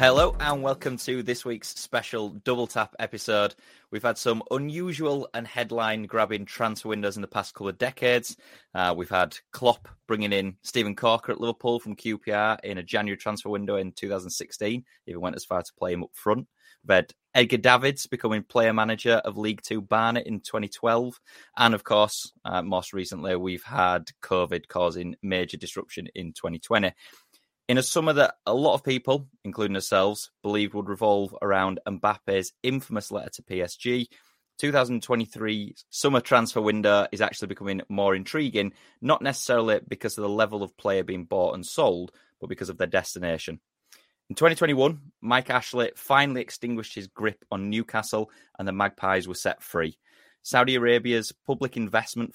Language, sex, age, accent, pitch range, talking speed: English, male, 20-39, British, 100-120 Hz, 165 wpm